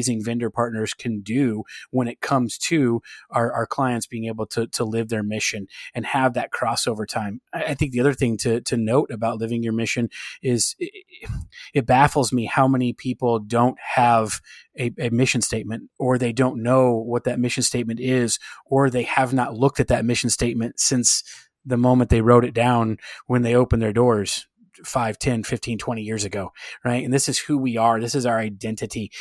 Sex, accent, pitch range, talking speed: male, American, 115-135 Hz, 200 wpm